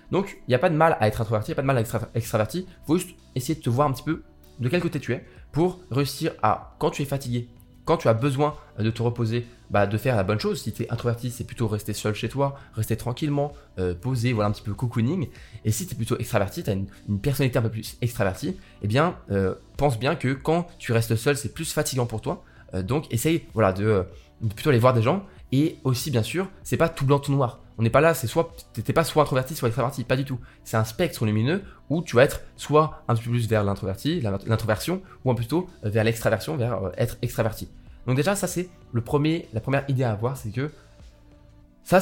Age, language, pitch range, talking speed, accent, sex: 20-39, French, 105-140 Hz, 255 wpm, French, male